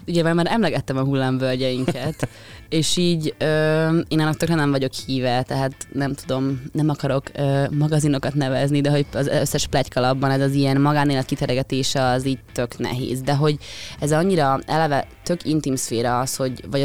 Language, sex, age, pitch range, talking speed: Hungarian, female, 20-39, 135-160 Hz, 170 wpm